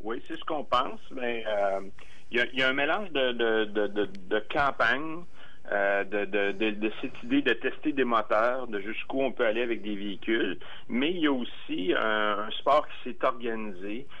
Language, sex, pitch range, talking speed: French, male, 105-120 Hz, 185 wpm